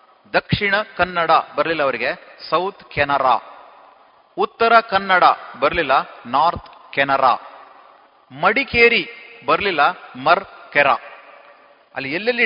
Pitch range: 155-205 Hz